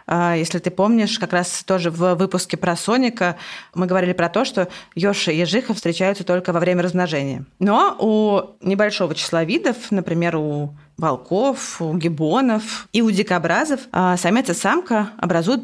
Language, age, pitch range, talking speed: Russian, 20-39, 170-210 Hz, 155 wpm